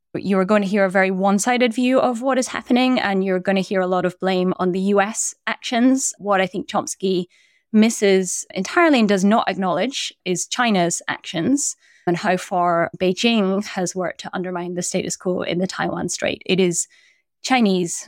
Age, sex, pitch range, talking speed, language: 20-39, female, 180-240 Hz, 185 wpm, English